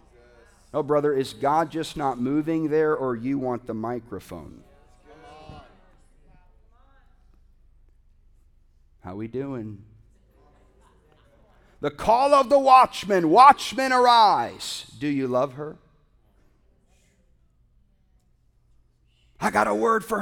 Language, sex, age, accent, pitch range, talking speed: English, male, 40-59, American, 95-135 Hz, 95 wpm